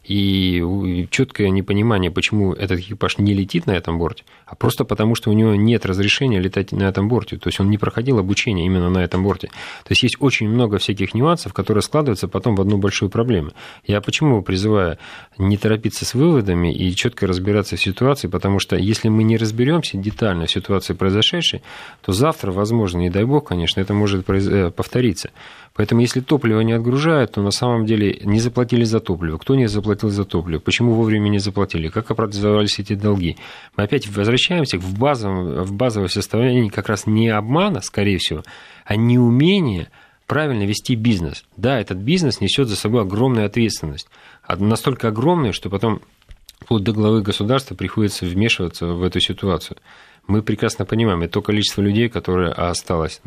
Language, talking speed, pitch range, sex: Russian, 175 wpm, 95-115 Hz, male